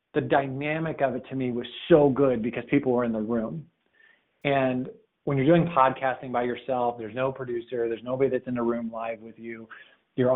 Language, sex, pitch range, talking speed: English, male, 110-130 Hz, 205 wpm